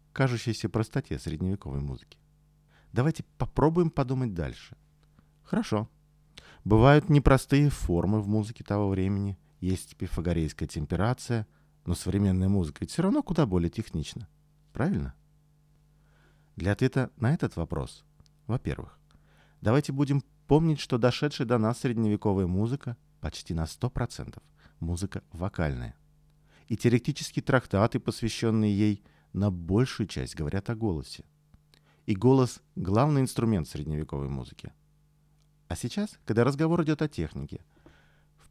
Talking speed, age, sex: 115 wpm, 50-69, male